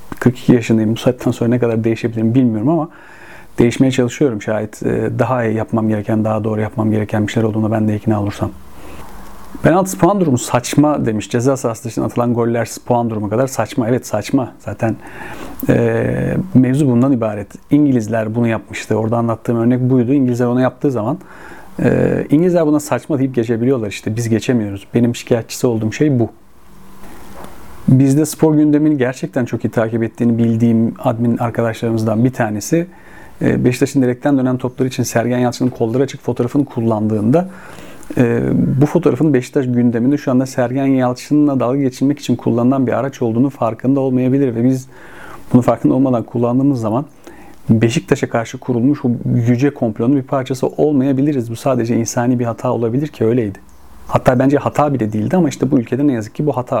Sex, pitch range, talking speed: male, 115-135 Hz, 160 wpm